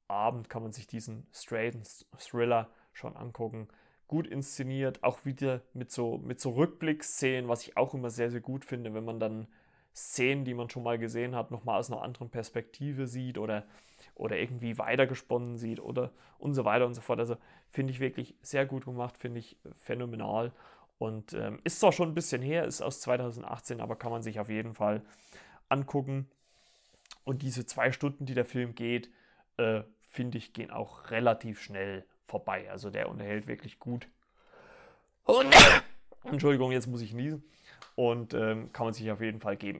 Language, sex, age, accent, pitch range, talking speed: German, male, 30-49, German, 115-135 Hz, 180 wpm